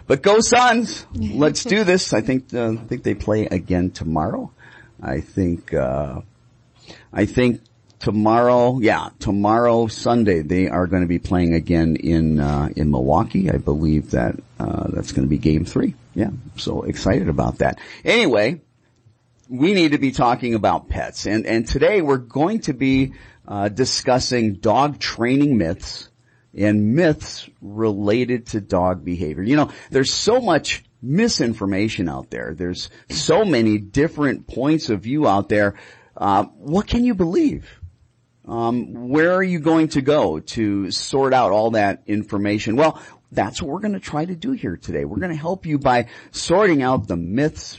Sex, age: male, 40-59